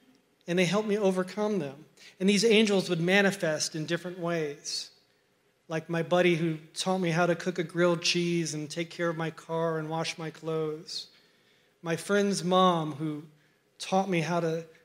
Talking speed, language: 180 wpm, English